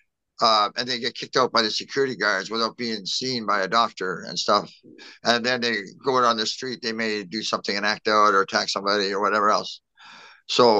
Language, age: English, 50-69